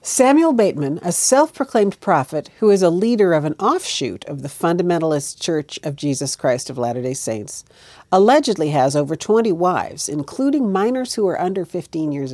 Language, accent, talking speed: English, American, 165 wpm